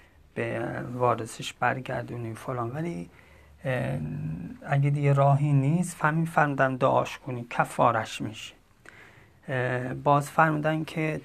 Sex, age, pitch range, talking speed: male, 30-49, 125-145 Hz, 90 wpm